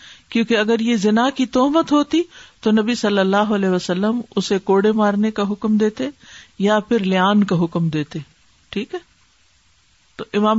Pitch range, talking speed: 175-220 Hz, 165 wpm